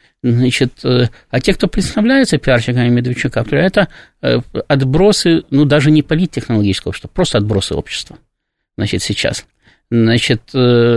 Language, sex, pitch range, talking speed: Russian, male, 120-160 Hz, 110 wpm